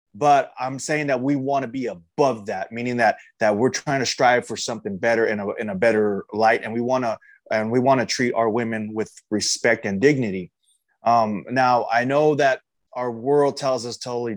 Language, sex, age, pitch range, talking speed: English, male, 20-39, 110-140 Hz, 215 wpm